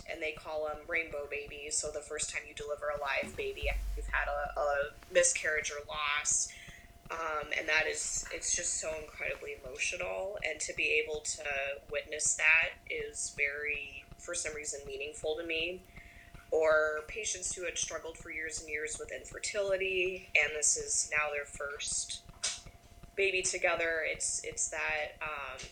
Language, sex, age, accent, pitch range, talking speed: English, female, 20-39, American, 150-185 Hz, 160 wpm